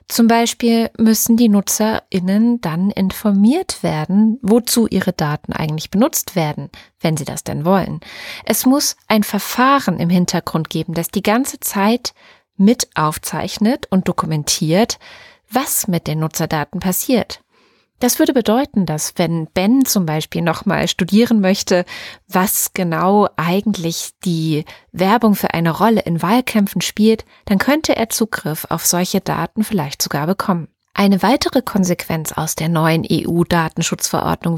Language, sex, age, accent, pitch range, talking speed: German, female, 30-49, German, 170-220 Hz, 135 wpm